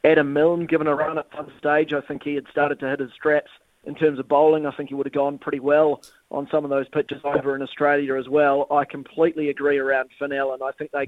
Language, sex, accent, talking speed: English, male, Australian, 260 wpm